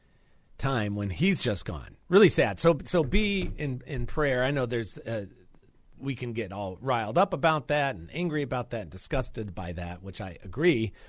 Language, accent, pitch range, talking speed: English, American, 100-135 Hz, 195 wpm